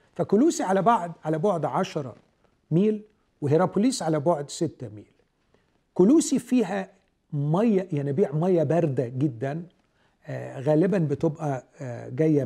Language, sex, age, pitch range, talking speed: Arabic, male, 50-69, 140-195 Hz, 120 wpm